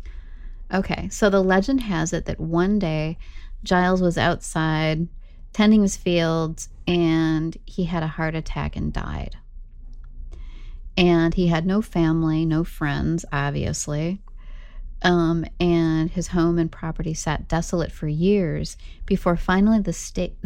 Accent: American